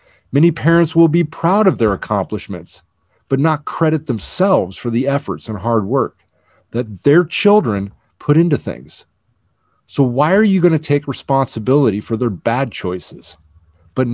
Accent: American